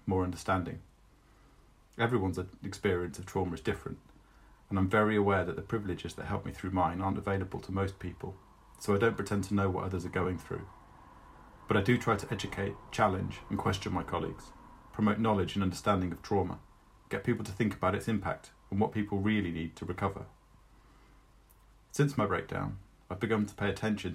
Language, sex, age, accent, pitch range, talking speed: English, male, 40-59, British, 95-105 Hz, 185 wpm